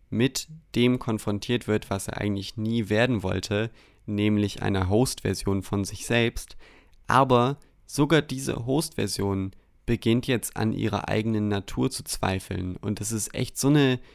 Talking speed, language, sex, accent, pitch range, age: 145 wpm, German, male, German, 100-115 Hz, 20-39